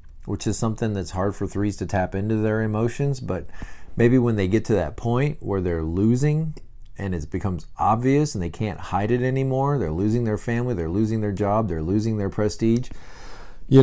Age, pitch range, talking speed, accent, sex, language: 40-59, 100-130 Hz, 200 wpm, American, male, English